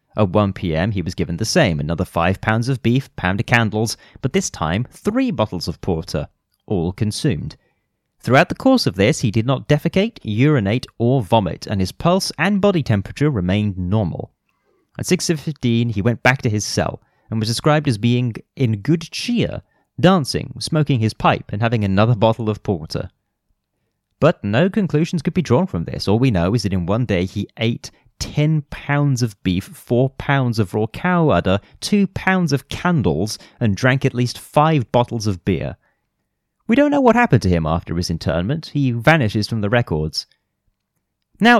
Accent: British